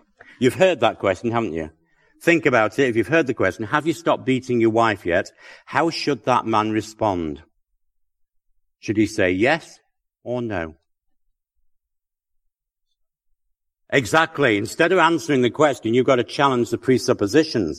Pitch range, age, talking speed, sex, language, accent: 95-125 Hz, 60-79, 150 wpm, male, English, British